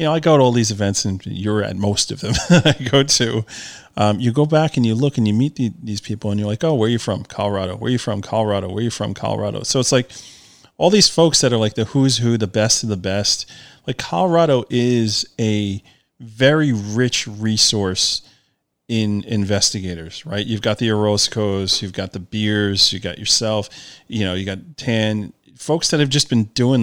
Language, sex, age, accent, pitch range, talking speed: English, male, 30-49, American, 100-125 Hz, 220 wpm